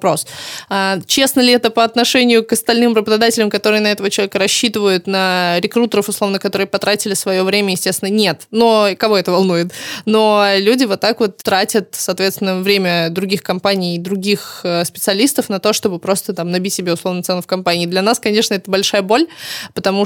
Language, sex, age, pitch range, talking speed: Russian, female, 20-39, 190-225 Hz, 170 wpm